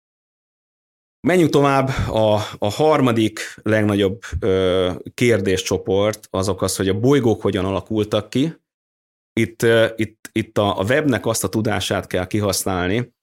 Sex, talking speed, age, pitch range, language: male, 110 wpm, 30-49, 90-115 Hz, Hungarian